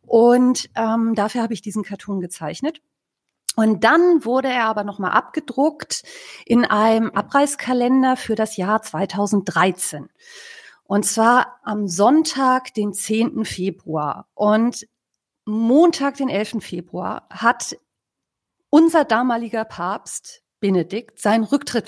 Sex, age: female, 40-59